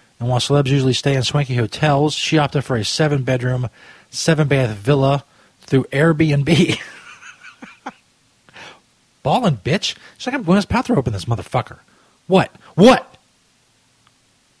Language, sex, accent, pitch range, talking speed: English, male, American, 115-150 Hz, 120 wpm